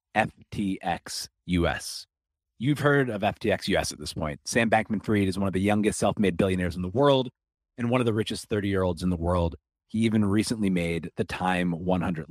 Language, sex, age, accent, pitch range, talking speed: English, male, 30-49, American, 90-120 Hz, 185 wpm